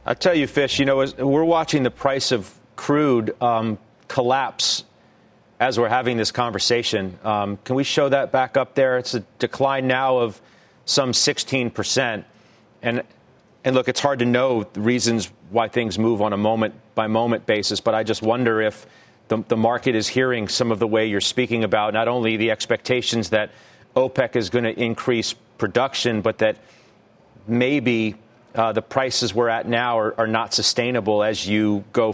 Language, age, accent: English, 40-59, American